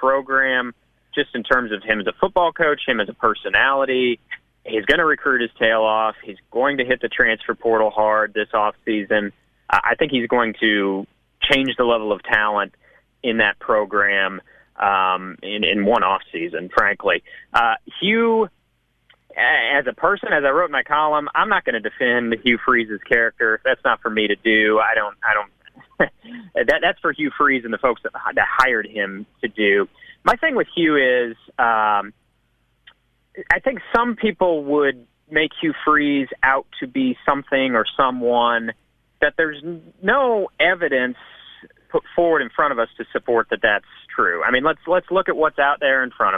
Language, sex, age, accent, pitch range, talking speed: English, male, 30-49, American, 110-155 Hz, 180 wpm